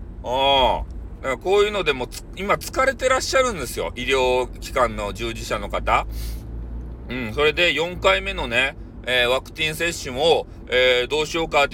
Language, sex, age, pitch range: Japanese, male, 40-59, 115-160 Hz